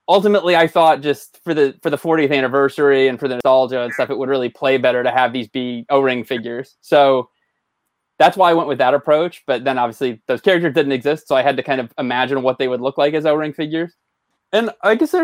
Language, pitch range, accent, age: English, 130-155 Hz, American, 20-39